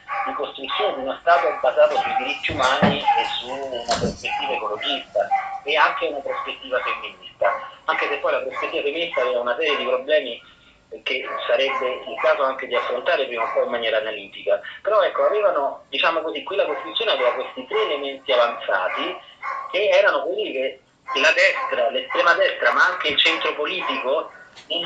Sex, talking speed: male, 165 wpm